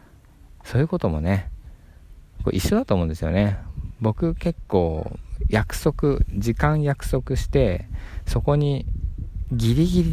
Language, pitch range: Japanese, 85-125 Hz